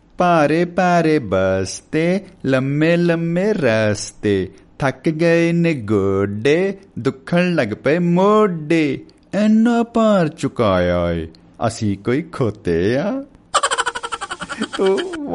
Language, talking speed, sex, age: Punjabi, 80 wpm, male, 50-69